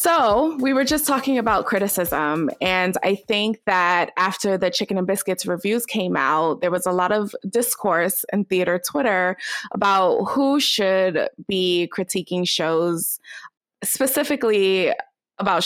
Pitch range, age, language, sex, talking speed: 185-220 Hz, 20-39, English, female, 140 wpm